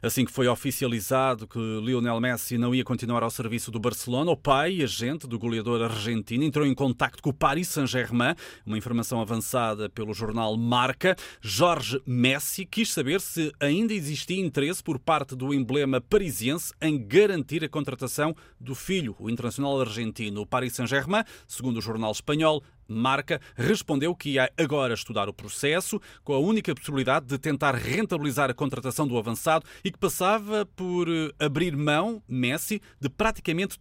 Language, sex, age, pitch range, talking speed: Portuguese, male, 30-49, 125-175 Hz, 160 wpm